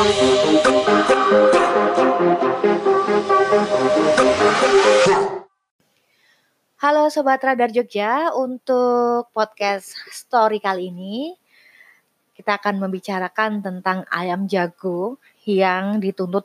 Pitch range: 185-235 Hz